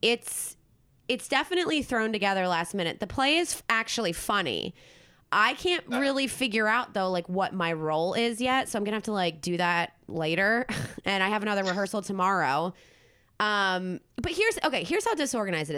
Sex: female